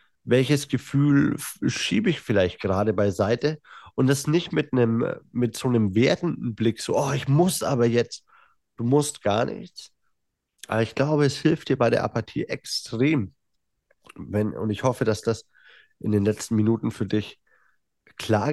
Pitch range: 110-140 Hz